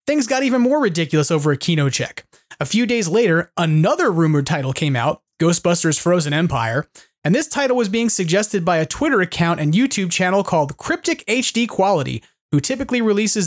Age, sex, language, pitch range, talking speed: 30-49, male, English, 165-225 Hz, 185 wpm